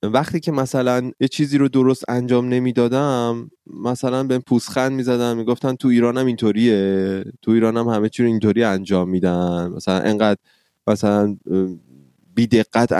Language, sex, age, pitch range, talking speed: Persian, male, 20-39, 105-140 Hz, 150 wpm